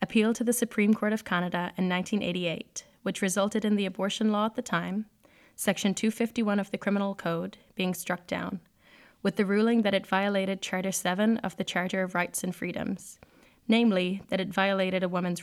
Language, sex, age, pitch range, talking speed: English, female, 10-29, 180-220 Hz, 185 wpm